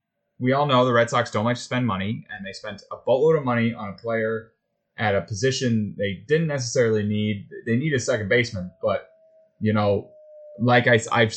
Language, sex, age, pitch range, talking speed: English, male, 20-39, 110-135 Hz, 200 wpm